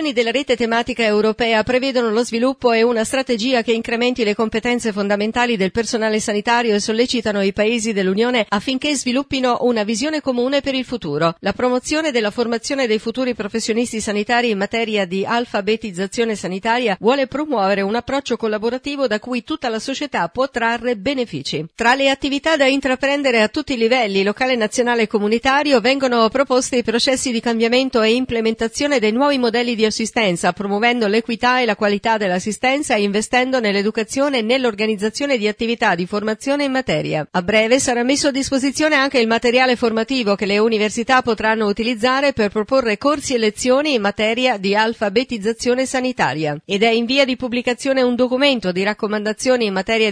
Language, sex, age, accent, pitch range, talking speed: Italian, female, 50-69, native, 215-255 Hz, 165 wpm